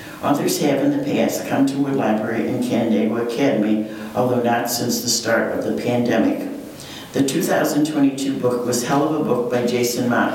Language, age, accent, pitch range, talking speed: English, 60-79, American, 120-140 Hz, 180 wpm